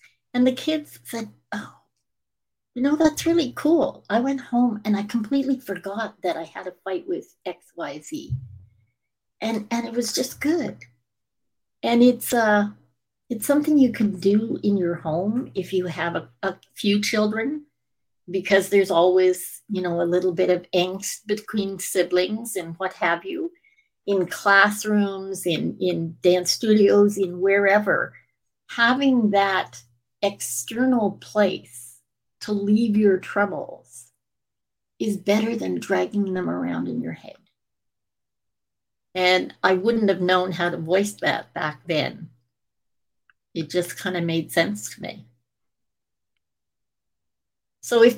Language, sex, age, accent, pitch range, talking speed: English, female, 60-79, American, 180-235 Hz, 135 wpm